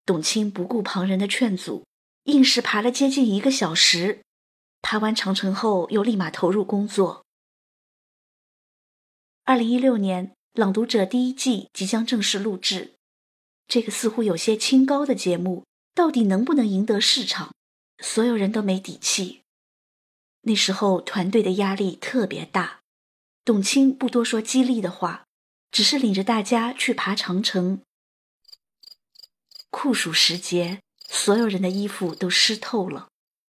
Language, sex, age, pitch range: Chinese, female, 20-39, 190-235 Hz